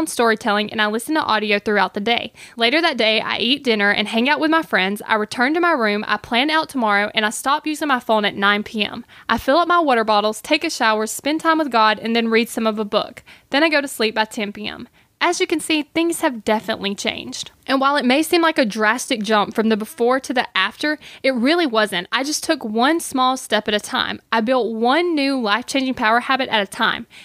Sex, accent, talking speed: female, American, 245 wpm